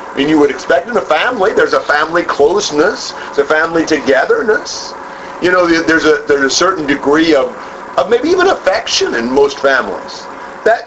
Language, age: English, 50-69